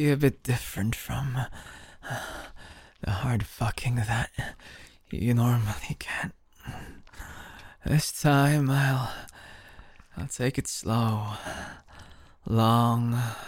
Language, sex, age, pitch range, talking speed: English, male, 20-39, 105-135 Hz, 90 wpm